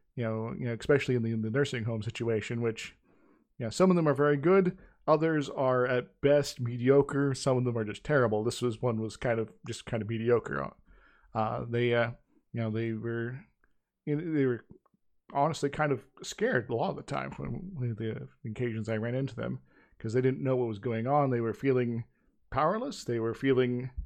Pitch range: 115-145 Hz